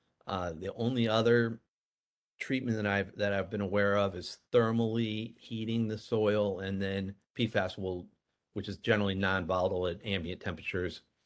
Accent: American